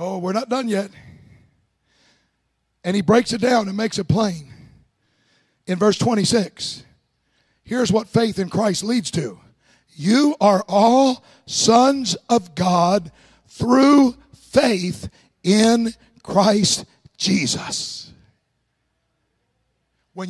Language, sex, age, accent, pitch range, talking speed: English, male, 60-79, American, 175-230 Hz, 105 wpm